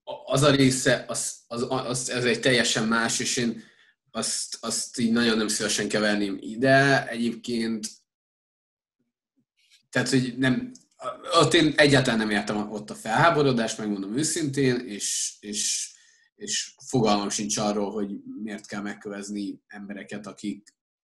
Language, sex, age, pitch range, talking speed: Hungarian, male, 20-39, 110-150 Hz, 130 wpm